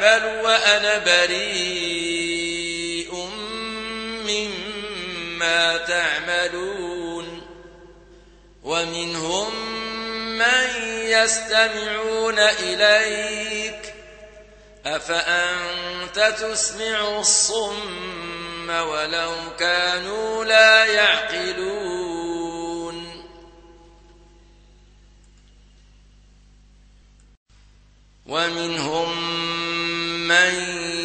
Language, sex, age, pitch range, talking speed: Arabic, male, 50-69, 170-205 Hz, 30 wpm